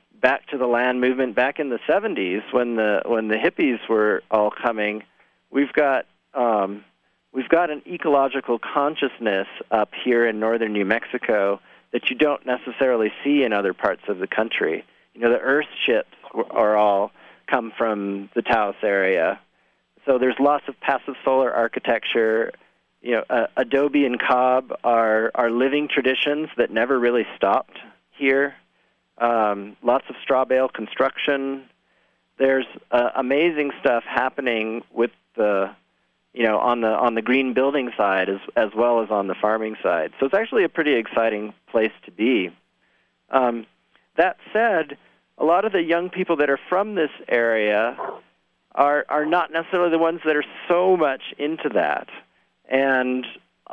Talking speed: 160 wpm